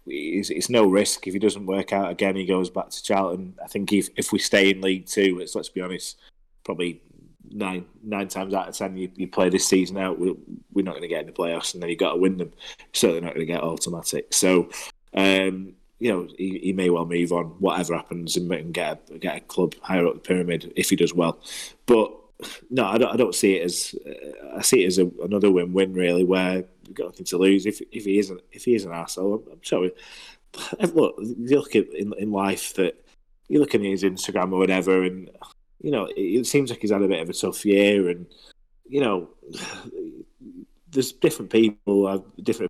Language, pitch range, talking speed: English, 90-100 Hz, 225 wpm